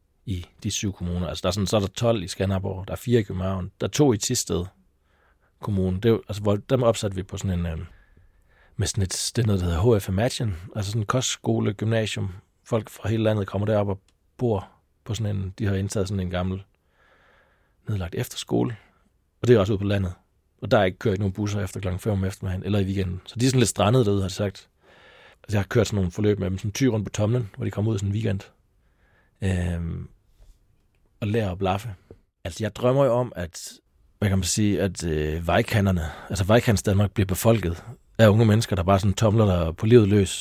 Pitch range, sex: 95-115 Hz, male